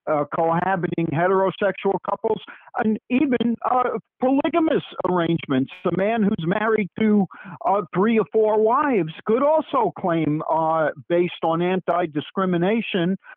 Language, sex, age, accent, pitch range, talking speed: English, male, 50-69, American, 160-210 Hz, 110 wpm